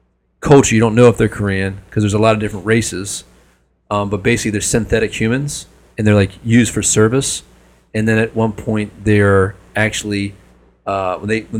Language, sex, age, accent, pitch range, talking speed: English, male, 30-49, American, 95-115 Hz, 190 wpm